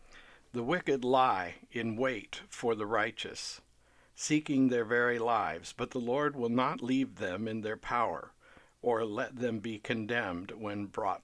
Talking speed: 155 wpm